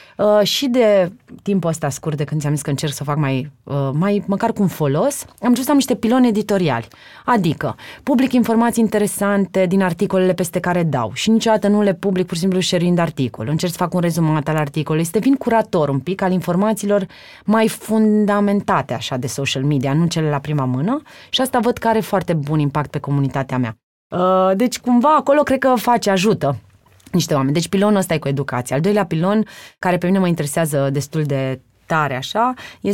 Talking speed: 210 wpm